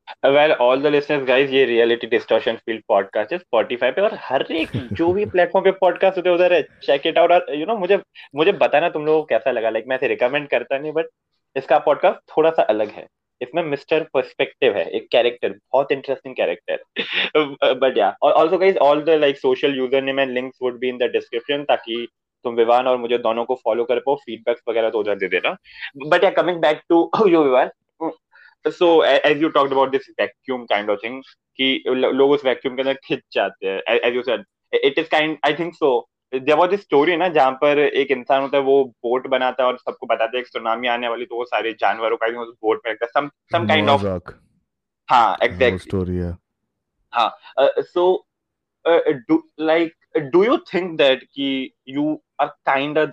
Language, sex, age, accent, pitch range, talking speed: Hindi, male, 20-39, native, 130-180 Hz, 80 wpm